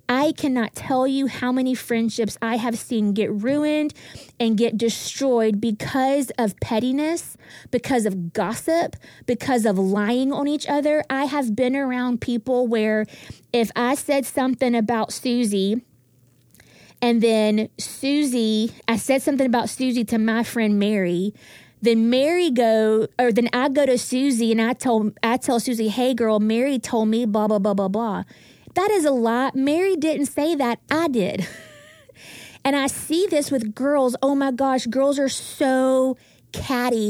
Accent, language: American, English